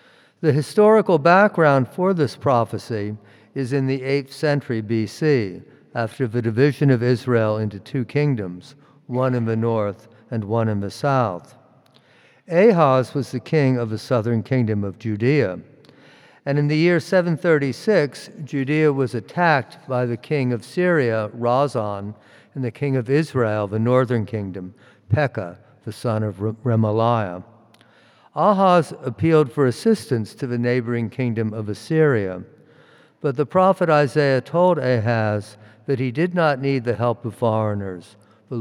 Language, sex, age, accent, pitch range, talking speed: English, male, 50-69, American, 110-145 Hz, 145 wpm